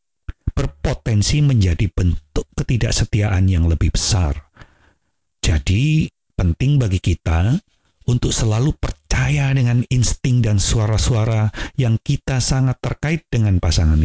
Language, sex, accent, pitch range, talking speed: Indonesian, male, native, 90-130 Hz, 100 wpm